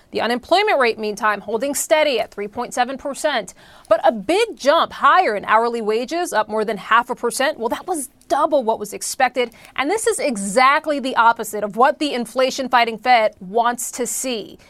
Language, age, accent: English, 30-49, American